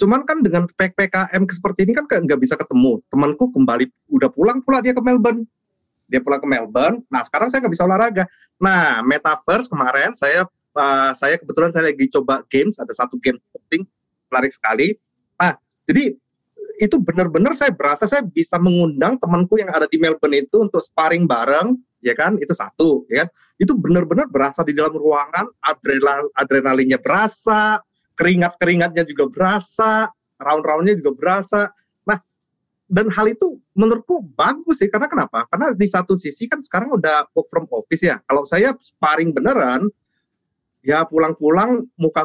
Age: 30-49